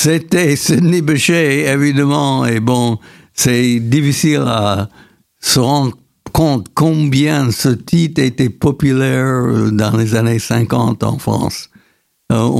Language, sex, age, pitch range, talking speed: French, male, 70-89, 110-140 Hz, 115 wpm